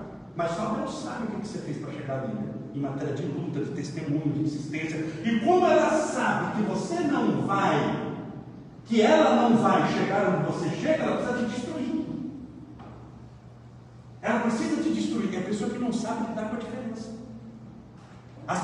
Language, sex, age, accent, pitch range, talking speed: Portuguese, male, 60-79, Brazilian, 160-250 Hz, 180 wpm